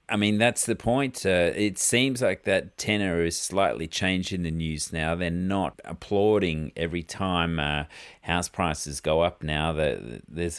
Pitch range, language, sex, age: 80-95 Hz, English, male, 40-59